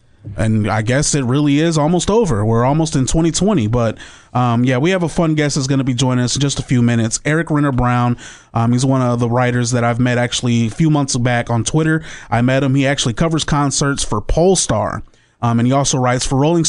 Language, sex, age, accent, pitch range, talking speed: English, male, 30-49, American, 120-145 Hz, 235 wpm